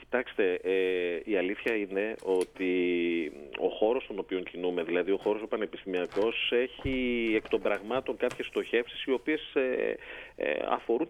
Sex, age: male, 30-49